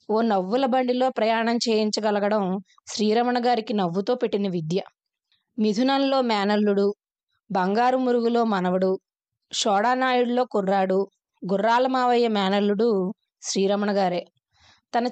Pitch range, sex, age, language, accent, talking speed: 195-245 Hz, female, 20-39, Telugu, native, 85 wpm